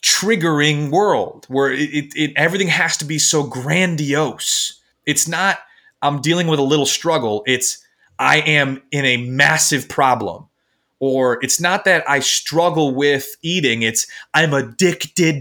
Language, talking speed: English, 150 wpm